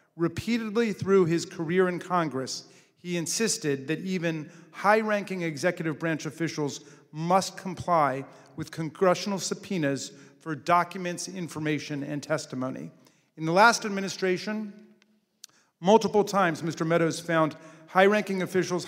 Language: English